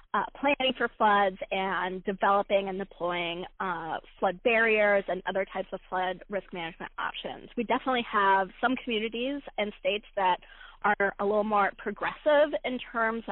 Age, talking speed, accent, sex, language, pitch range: 20-39, 155 wpm, American, female, English, 200-235 Hz